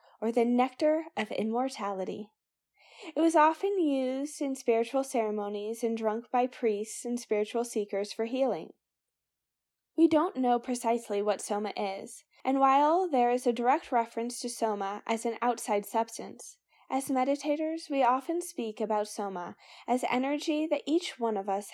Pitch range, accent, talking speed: 210-275 Hz, American, 150 wpm